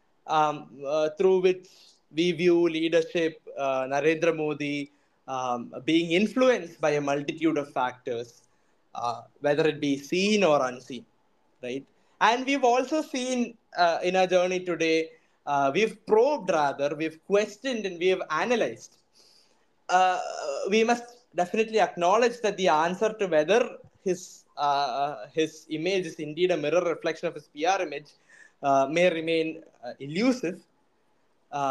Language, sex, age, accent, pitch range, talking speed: English, male, 20-39, Indian, 150-200 Hz, 140 wpm